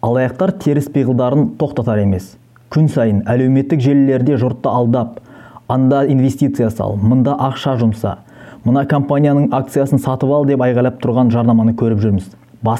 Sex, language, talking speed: male, Russian, 110 wpm